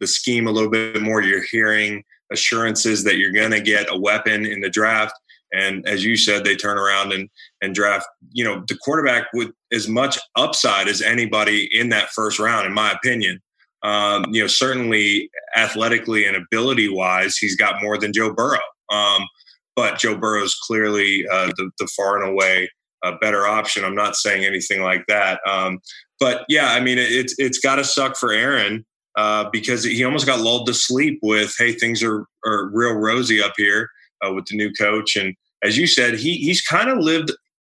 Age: 20-39